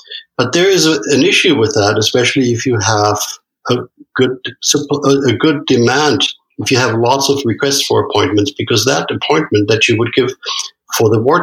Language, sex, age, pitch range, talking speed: English, male, 60-79, 105-140 Hz, 185 wpm